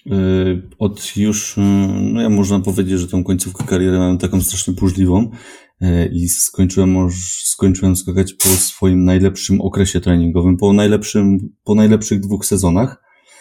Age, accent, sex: 30-49, native, male